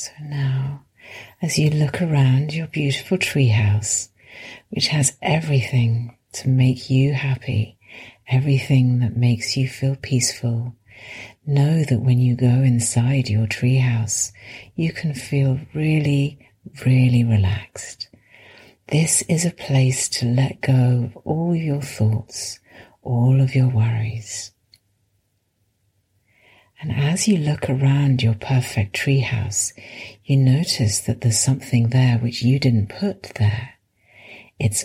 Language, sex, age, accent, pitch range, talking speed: English, female, 60-79, British, 110-140 Hz, 125 wpm